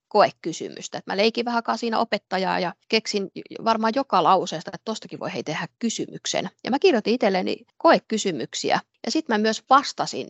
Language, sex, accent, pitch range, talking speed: Finnish, female, native, 190-245 Hz, 155 wpm